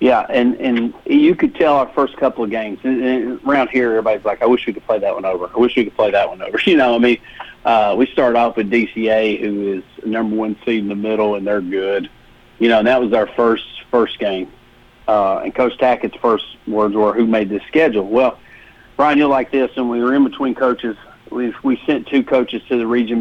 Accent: American